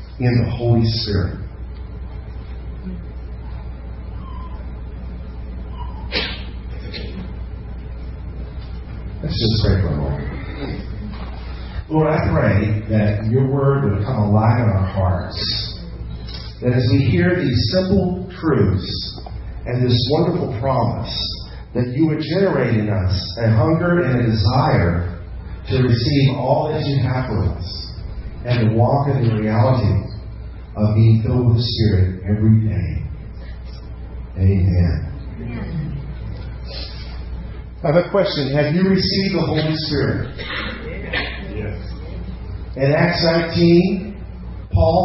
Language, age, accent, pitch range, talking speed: English, 40-59, American, 85-140 Hz, 105 wpm